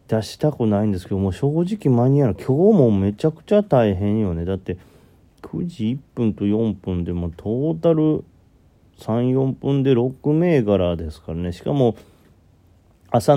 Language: Japanese